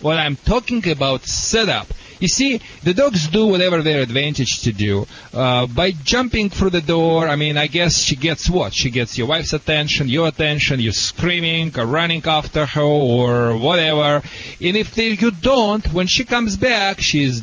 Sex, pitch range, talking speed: male, 135-190 Hz, 195 wpm